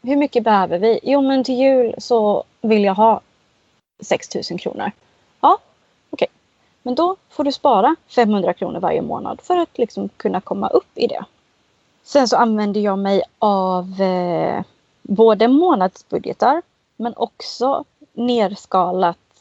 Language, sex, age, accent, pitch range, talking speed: Swedish, female, 30-49, native, 190-240 Hz, 140 wpm